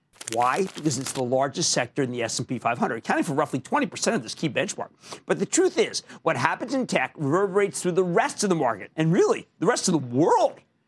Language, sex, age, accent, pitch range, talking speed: English, male, 50-69, American, 150-220 Hz, 220 wpm